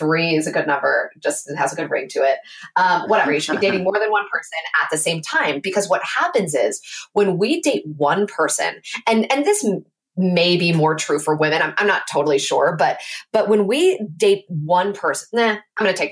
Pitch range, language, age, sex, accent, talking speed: 160-225 Hz, English, 20-39, female, American, 225 wpm